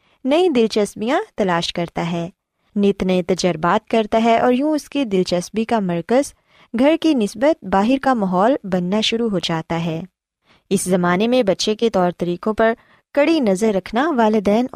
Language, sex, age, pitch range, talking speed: Urdu, female, 20-39, 185-255 Hz, 160 wpm